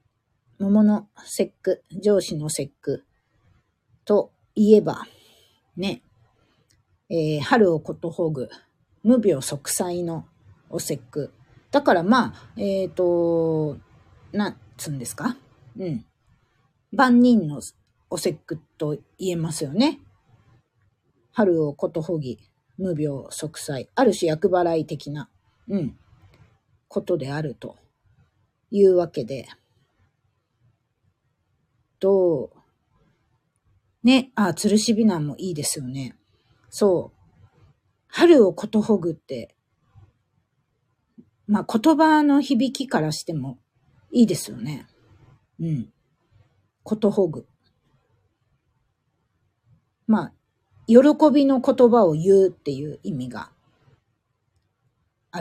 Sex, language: female, Japanese